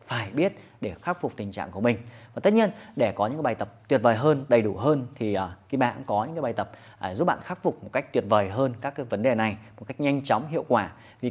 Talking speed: 295 wpm